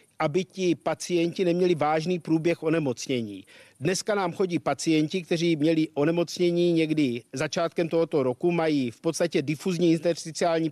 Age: 50-69